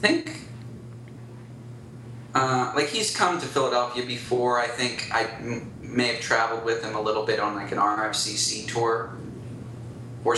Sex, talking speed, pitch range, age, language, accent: male, 145 wpm, 115-125 Hz, 20-39, English, American